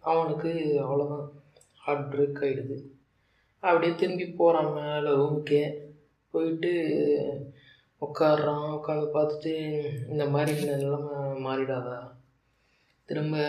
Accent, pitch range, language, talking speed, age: native, 140-155 Hz, Tamil, 75 wpm, 20-39